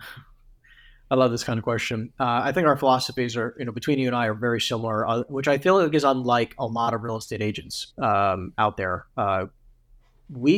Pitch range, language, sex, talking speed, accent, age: 120-145 Hz, English, male, 220 wpm, American, 30-49